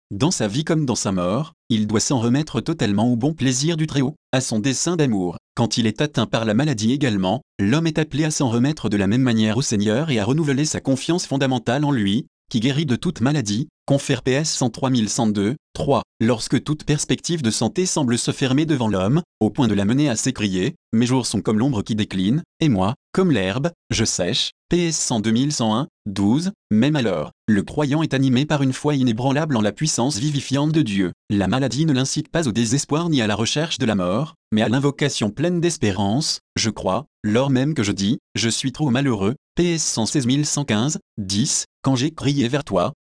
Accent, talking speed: French, 210 wpm